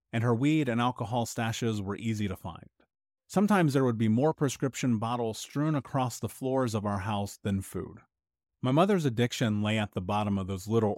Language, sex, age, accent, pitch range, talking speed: English, male, 30-49, American, 100-135 Hz, 195 wpm